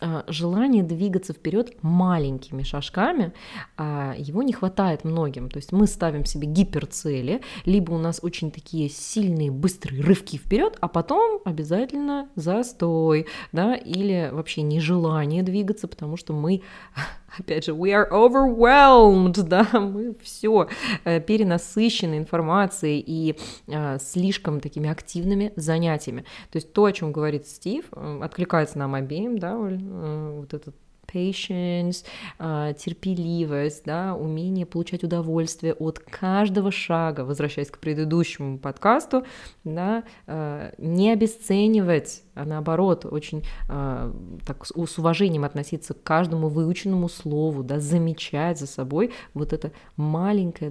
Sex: female